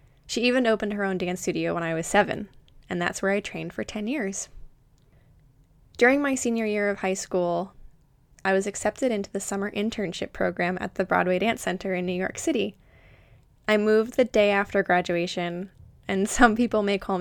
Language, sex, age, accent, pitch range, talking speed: English, female, 10-29, American, 180-210 Hz, 190 wpm